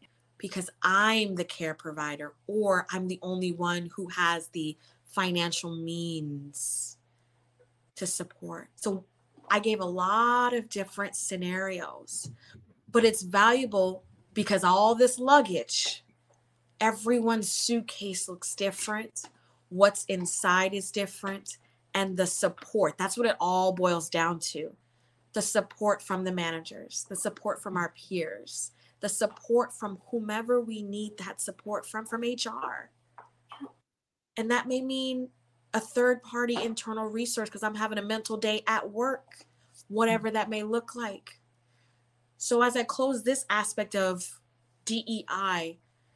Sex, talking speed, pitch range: female, 130 wpm, 170-220 Hz